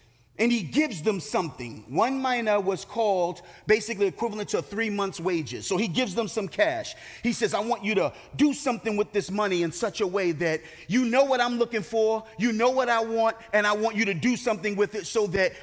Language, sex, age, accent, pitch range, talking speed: English, male, 30-49, American, 175-235 Hz, 230 wpm